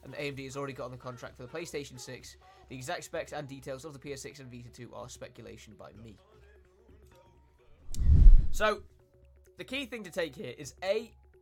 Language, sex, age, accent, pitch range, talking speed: French, male, 20-39, British, 115-150 Hz, 190 wpm